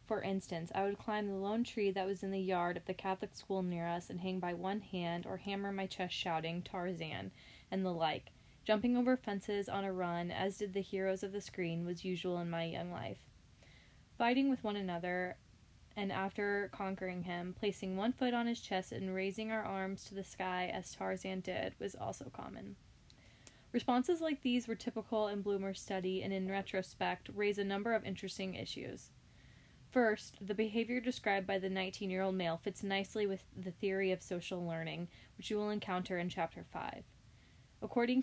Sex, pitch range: female, 175-205 Hz